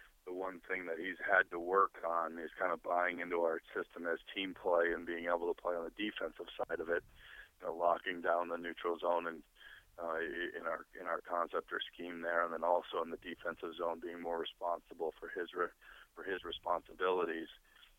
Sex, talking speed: male, 210 wpm